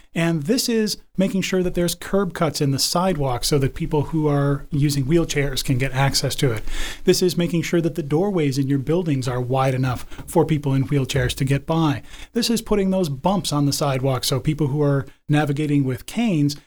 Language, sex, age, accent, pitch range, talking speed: English, male, 30-49, American, 140-180 Hz, 210 wpm